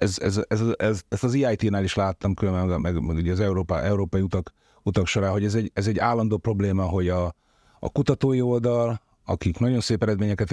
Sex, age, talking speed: male, 30-49, 205 wpm